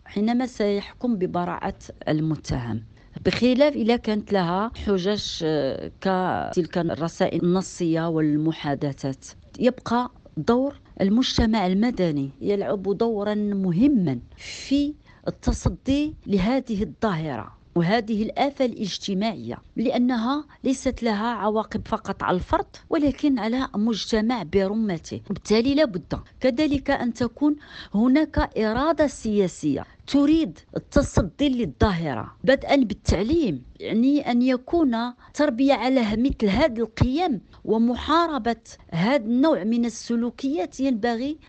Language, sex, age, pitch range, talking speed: Arabic, female, 50-69, 200-275 Hz, 95 wpm